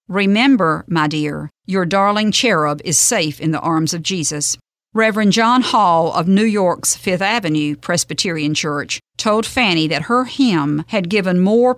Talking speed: 160 wpm